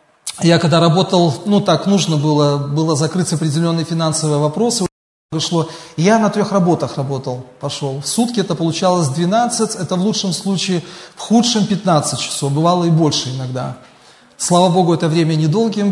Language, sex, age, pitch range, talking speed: Russian, male, 30-49, 150-185 Hz, 155 wpm